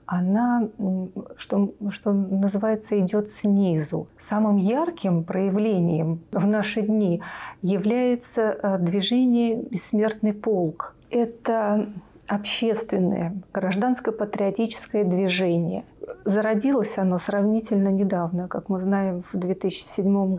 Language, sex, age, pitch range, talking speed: Russian, female, 30-49, 185-215 Hz, 85 wpm